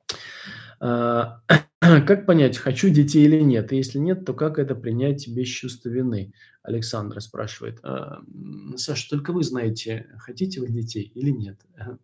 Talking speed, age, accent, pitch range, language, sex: 135 wpm, 20-39, native, 115-150 Hz, Russian, male